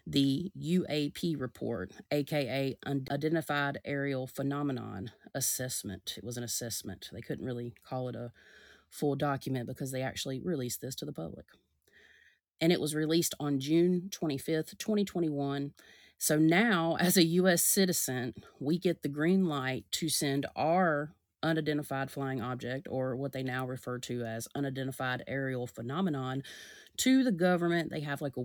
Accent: American